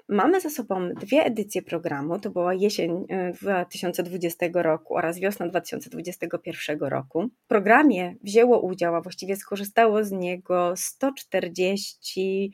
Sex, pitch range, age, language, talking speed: female, 185-225 Hz, 30-49, Polish, 120 wpm